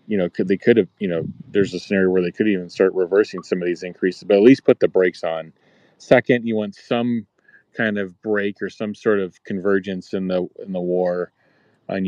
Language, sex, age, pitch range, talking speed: English, male, 40-59, 95-110 Hz, 225 wpm